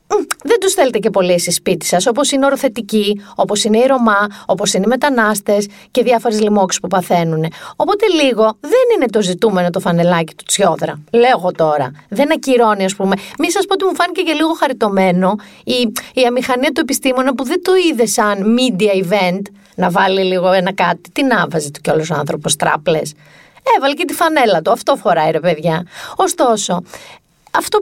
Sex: female